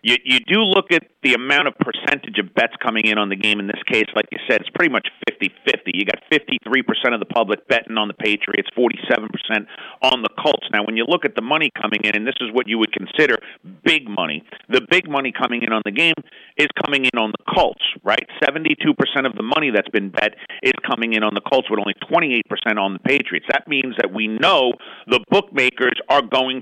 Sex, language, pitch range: male, English, 110-160 Hz